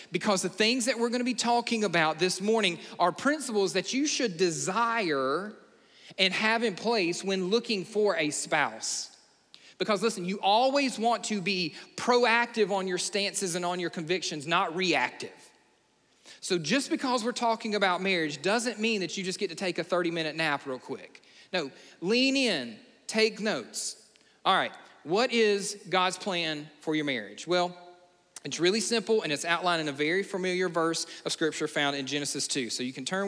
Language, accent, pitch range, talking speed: English, American, 165-220 Hz, 180 wpm